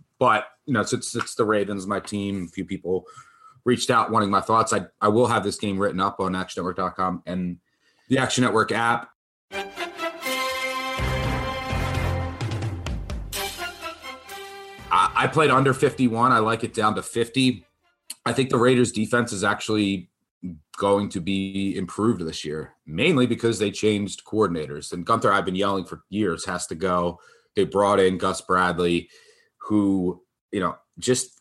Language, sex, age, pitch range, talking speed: English, male, 30-49, 90-120 Hz, 150 wpm